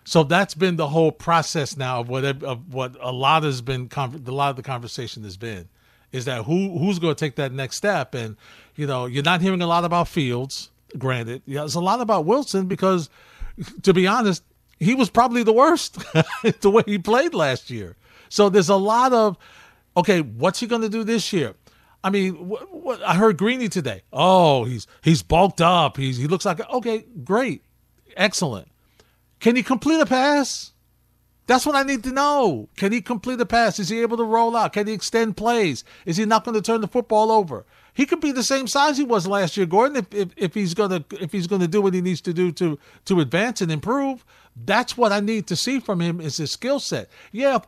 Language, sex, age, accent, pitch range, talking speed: English, male, 40-59, American, 155-225 Hz, 220 wpm